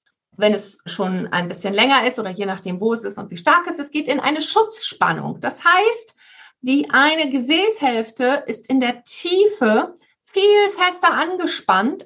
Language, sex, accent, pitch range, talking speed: German, female, German, 230-330 Hz, 170 wpm